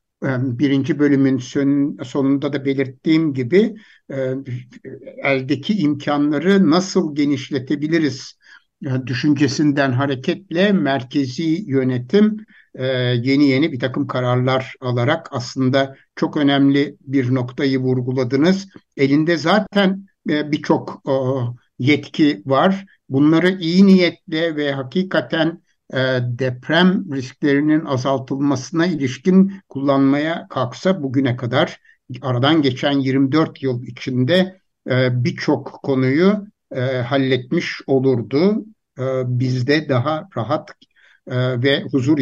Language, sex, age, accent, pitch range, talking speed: Turkish, male, 60-79, native, 135-170 Hz, 90 wpm